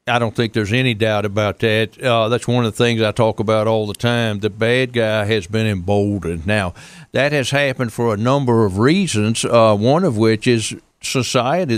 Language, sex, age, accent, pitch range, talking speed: English, male, 60-79, American, 110-135 Hz, 210 wpm